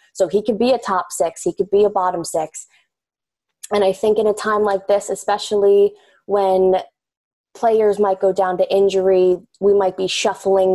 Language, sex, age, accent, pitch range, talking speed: English, female, 20-39, American, 185-225 Hz, 185 wpm